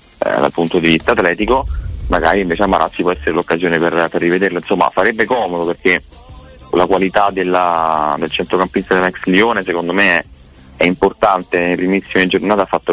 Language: Italian